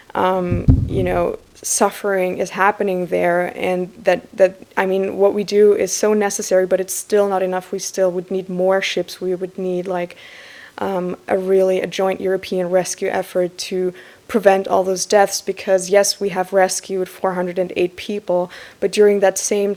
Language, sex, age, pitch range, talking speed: English, female, 20-39, 180-195 Hz, 175 wpm